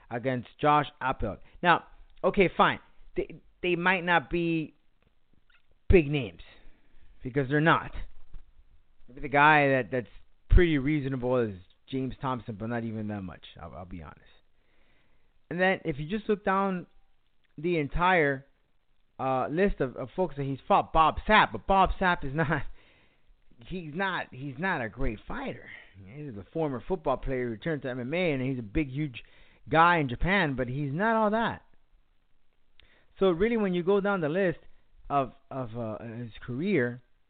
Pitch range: 120-175 Hz